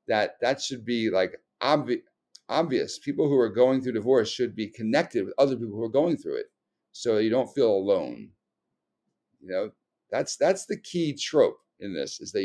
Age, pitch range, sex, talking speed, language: 50-69, 110-175 Hz, male, 195 wpm, English